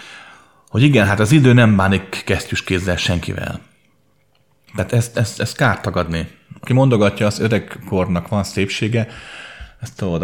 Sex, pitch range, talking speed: male, 90-115 Hz, 140 wpm